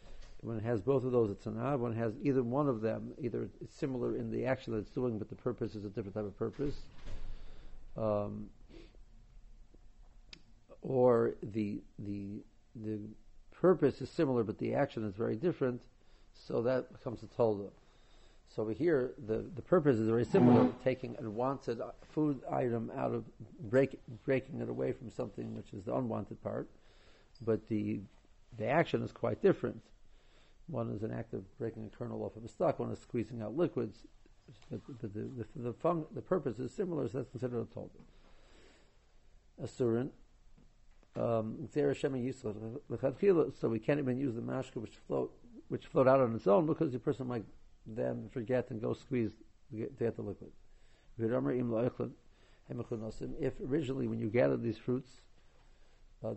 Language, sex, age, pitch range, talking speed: English, male, 50-69, 110-130 Hz, 165 wpm